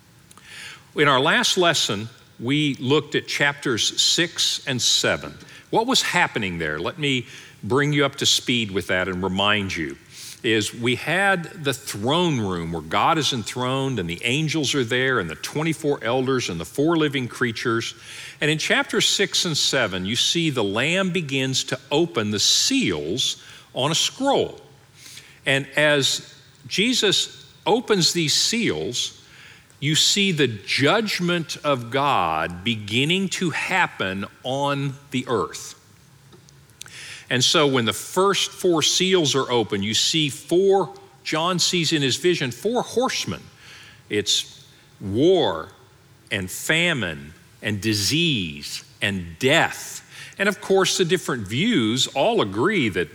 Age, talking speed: 50-69, 140 wpm